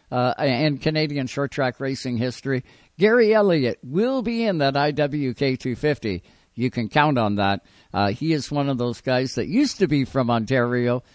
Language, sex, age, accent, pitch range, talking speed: English, male, 60-79, American, 125-180 Hz, 180 wpm